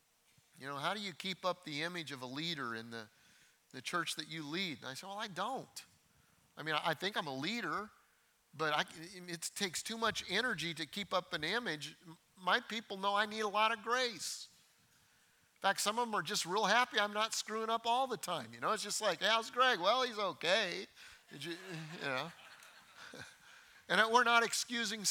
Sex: male